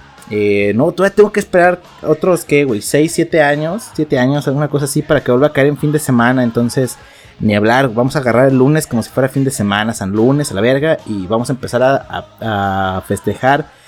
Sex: male